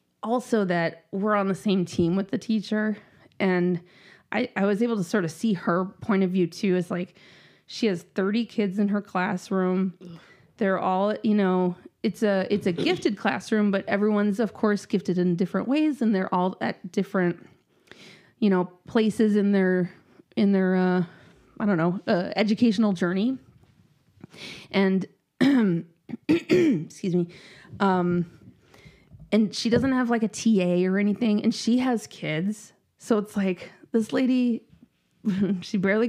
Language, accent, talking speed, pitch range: English, American, 155 wpm, 185-215 Hz